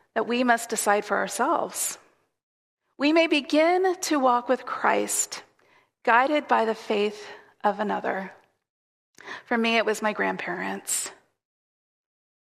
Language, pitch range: English, 215-270 Hz